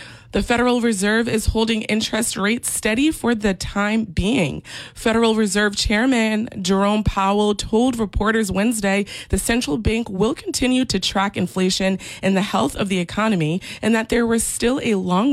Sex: female